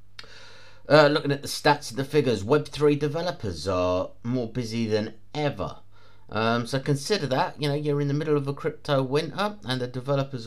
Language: English